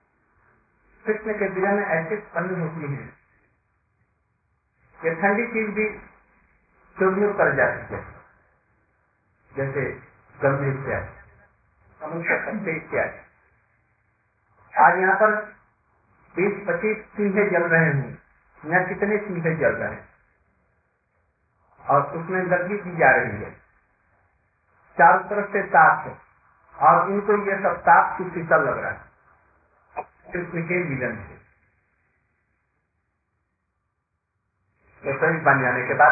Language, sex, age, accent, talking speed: Hindi, male, 50-69, native, 85 wpm